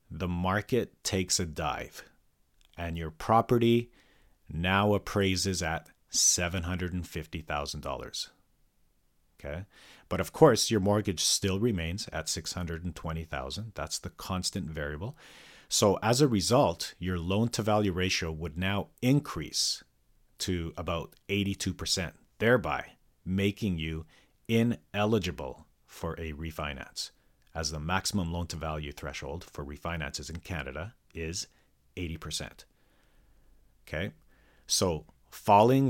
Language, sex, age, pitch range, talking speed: English, male, 40-59, 80-100 Hz, 100 wpm